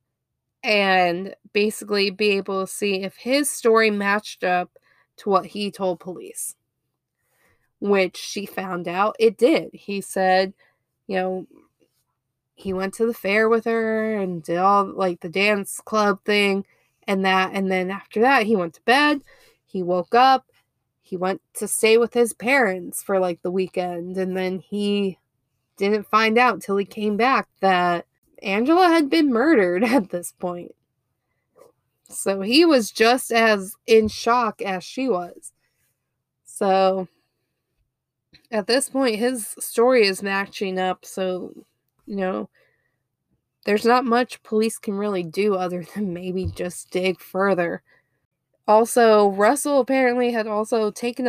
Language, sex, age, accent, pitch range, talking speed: English, female, 20-39, American, 185-230 Hz, 145 wpm